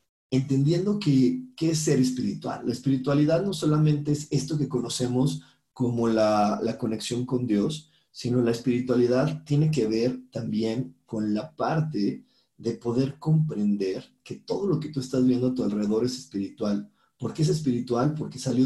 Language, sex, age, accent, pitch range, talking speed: Spanish, male, 40-59, Mexican, 115-135 Hz, 160 wpm